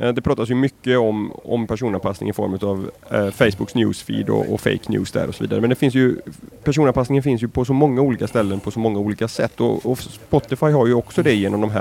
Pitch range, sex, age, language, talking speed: 105-135 Hz, male, 30-49, Swedish, 245 wpm